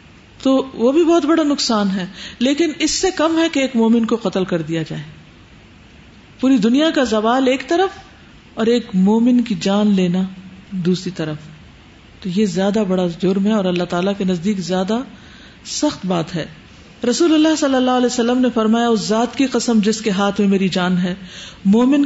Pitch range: 190-255 Hz